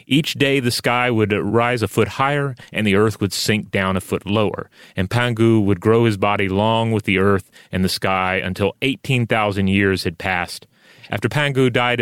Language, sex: English, male